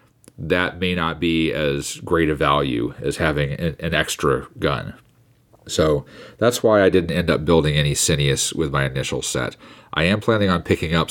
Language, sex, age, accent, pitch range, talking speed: English, male, 40-59, American, 75-100 Hz, 185 wpm